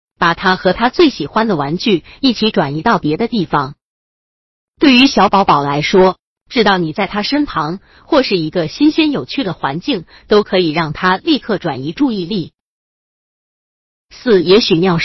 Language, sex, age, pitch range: Chinese, female, 30-49, 175-260 Hz